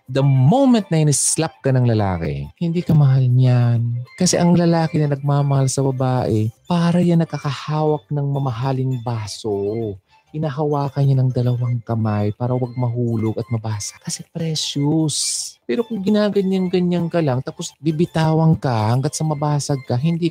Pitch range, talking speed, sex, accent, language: 105-150 Hz, 145 wpm, male, native, Filipino